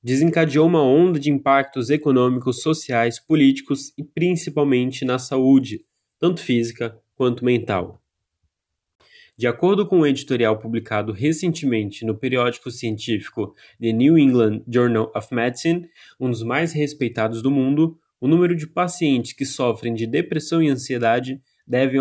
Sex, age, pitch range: male, 20-39, 115-150 Hz